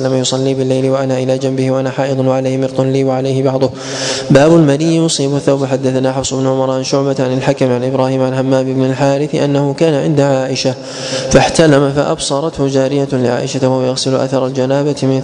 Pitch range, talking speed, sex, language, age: 130-145 Hz, 165 wpm, male, Arabic, 20-39